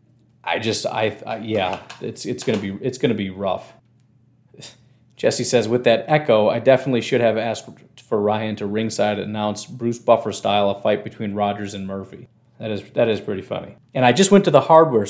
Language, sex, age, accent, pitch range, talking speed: English, male, 30-49, American, 105-130 Hz, 205 wpm